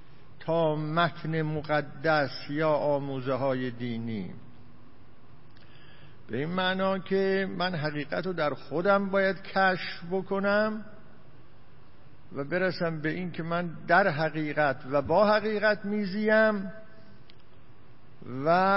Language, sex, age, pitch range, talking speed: Persian, male, 50-69, 145-185 Hz, 100 wpm